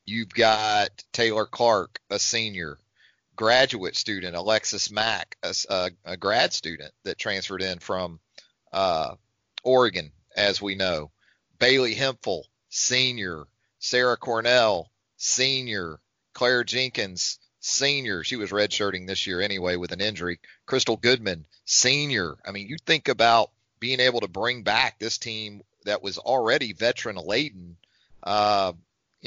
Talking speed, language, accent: 125 wpm, English, American